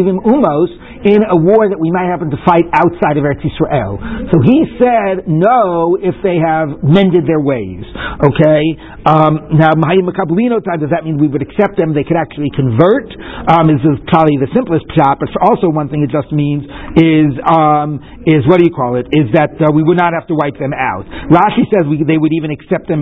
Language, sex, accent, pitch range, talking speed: English, male, American, 155-200 Hz, 215 wpm